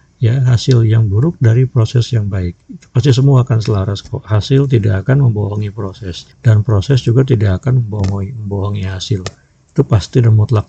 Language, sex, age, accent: Indonesian, male, 50-69, native